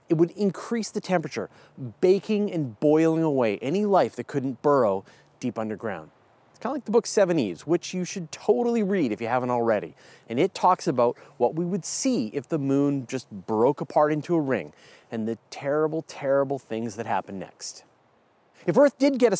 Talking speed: 195 wpm